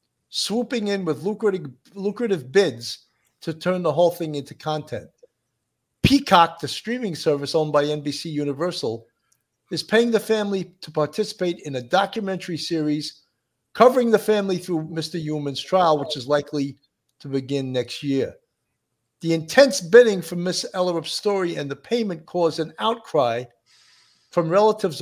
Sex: male